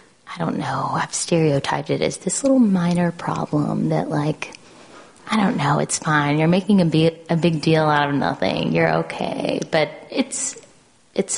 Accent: American